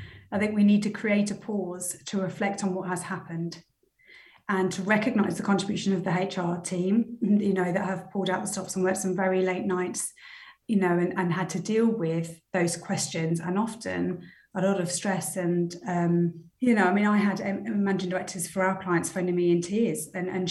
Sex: female